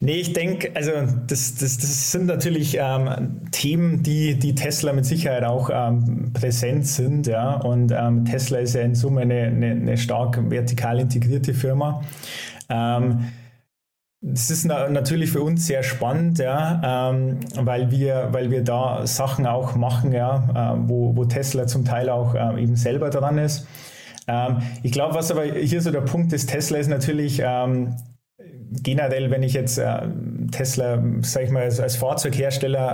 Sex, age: male, 20-39